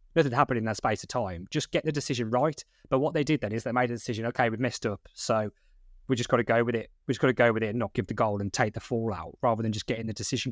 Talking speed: 325 wpm